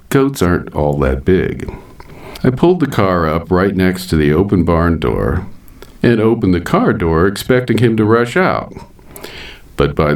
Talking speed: 170 wpm